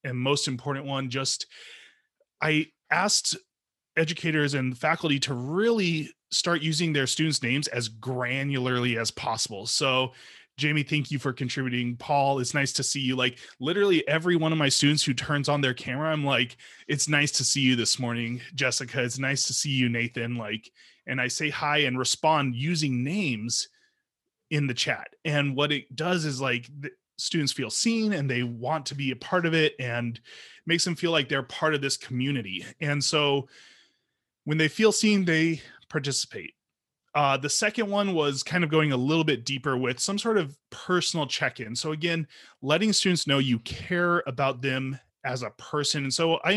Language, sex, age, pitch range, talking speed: English, male, 20-39, 125-155 Hz, 185 wpm